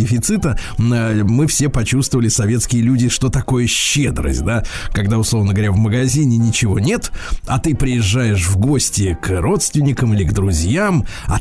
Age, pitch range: 20-39, 110-145 Hz